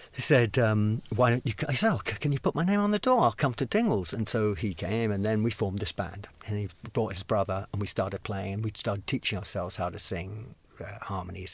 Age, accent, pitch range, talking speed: 50-69, British, 100-115 Hz, 255 wpm